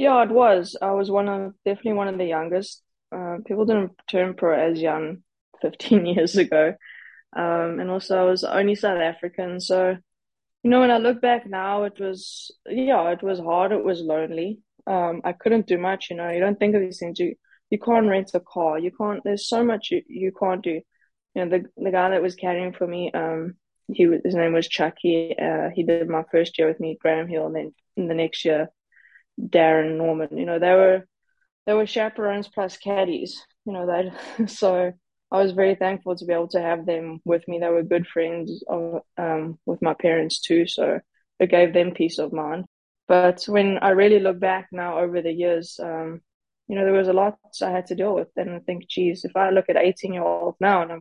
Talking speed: 220 wpm